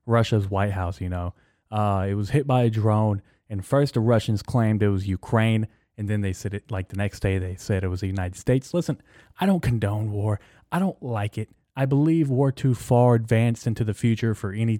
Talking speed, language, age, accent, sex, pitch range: 225 wpm, English, 20-39, American, male, 100-125 Hz